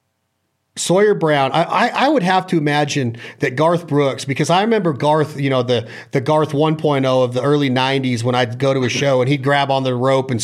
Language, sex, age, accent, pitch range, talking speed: English, male, 40-59, American, 135-160 Hz, 225 wpm